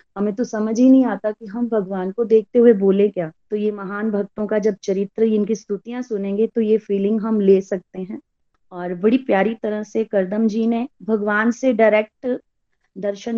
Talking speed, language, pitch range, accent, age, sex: 195 wpm, Hindi, 195-240 Hz, native, 30-49, female